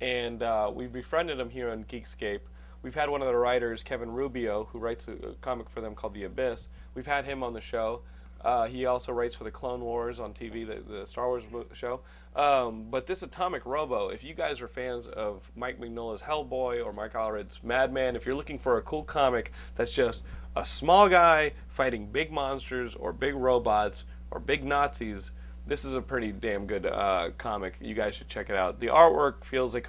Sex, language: male, English